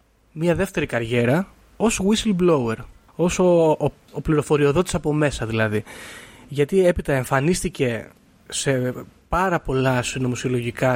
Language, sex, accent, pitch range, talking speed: Greek, male, native, 130-185 Hz, 110 wpm